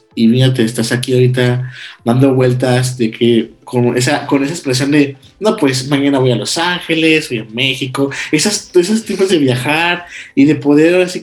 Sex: male